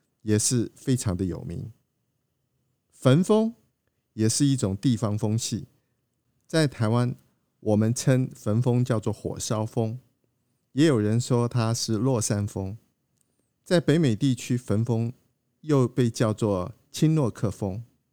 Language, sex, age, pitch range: Chinese, male, 50-69, 110-135 Hz